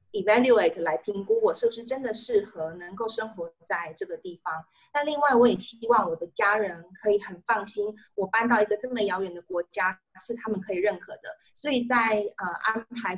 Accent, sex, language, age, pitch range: native, female, Chinese, 30-49, 185-230 Hz